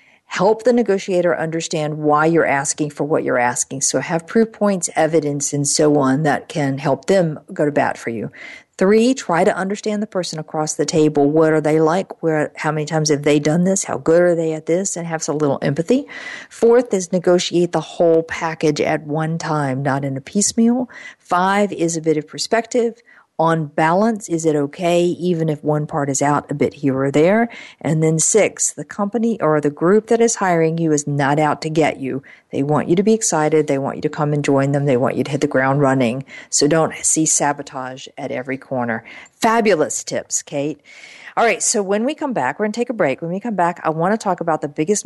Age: 50-69